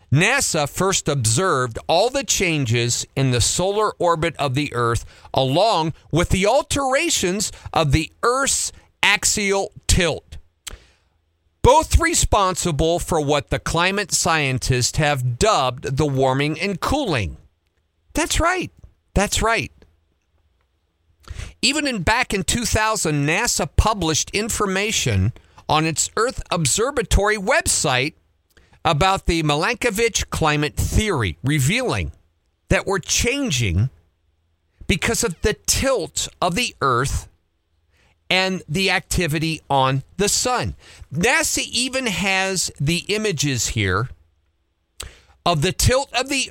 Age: 50-69